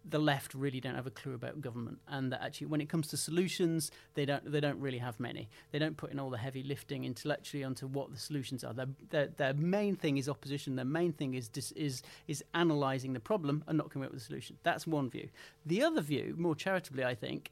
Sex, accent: male, British